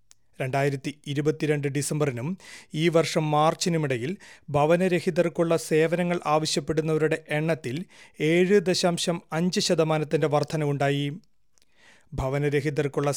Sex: male